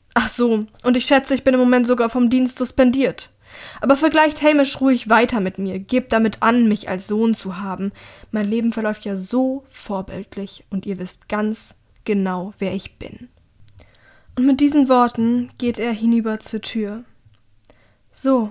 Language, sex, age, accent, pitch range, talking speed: German, female, 10-29, German, 195-235 Hz, 170 wpm